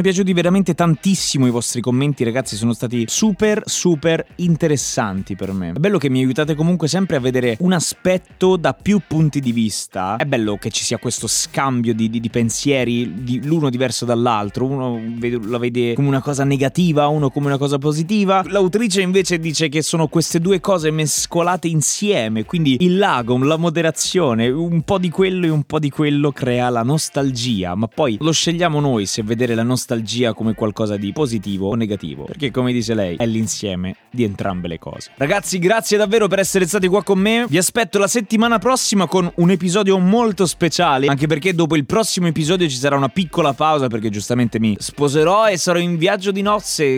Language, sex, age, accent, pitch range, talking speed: Italian, male, 20-39, native, 120-185 Hz, 190 wpm